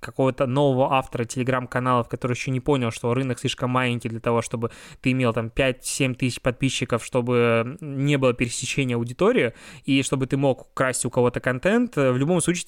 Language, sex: Russian, male